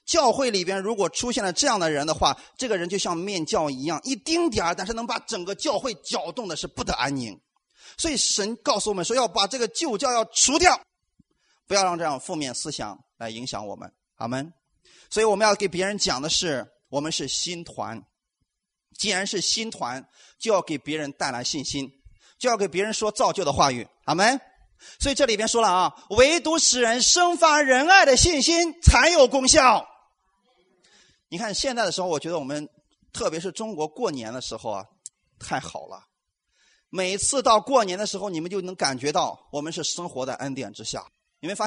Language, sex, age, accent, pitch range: Chinese, male, 30-49, native, 170-255 Hz